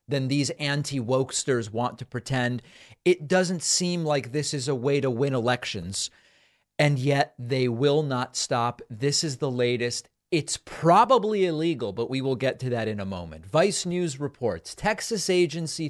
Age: 40-59